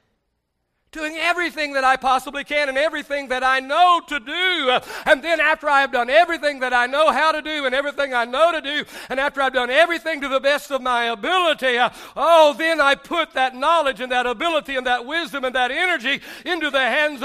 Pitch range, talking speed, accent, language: 260-335 Hz, 210 wpm, American, English